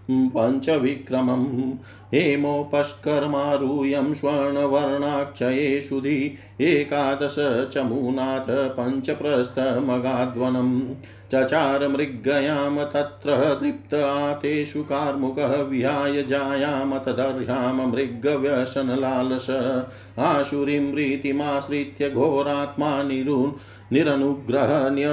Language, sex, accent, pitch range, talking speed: Hindi, male, native, 130-145 Hz, 40 wpm